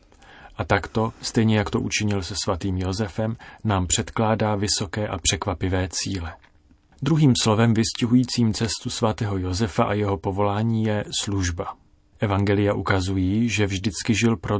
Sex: male